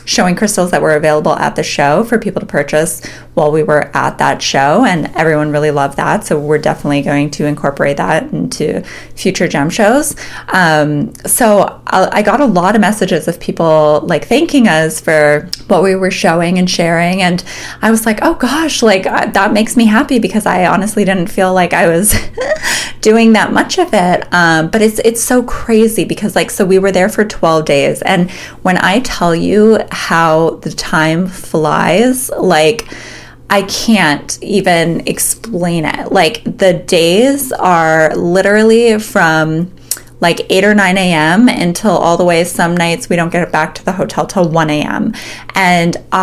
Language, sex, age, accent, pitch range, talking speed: English, female, 20-39, American, 160-215 Hz, 180 wpm